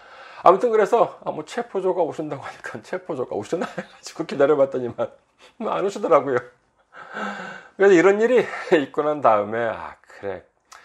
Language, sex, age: Korean, male, 40-59